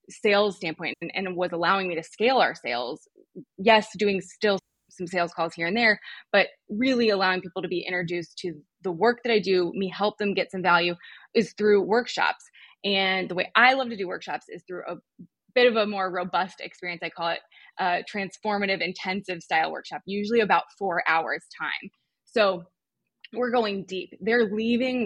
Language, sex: English, female